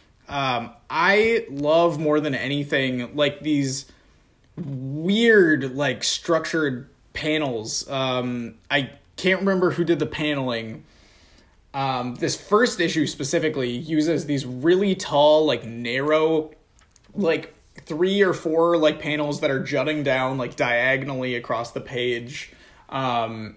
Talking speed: 120 wpm